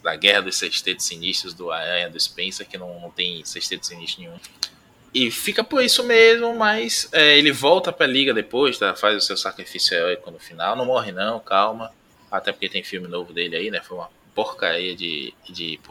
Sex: male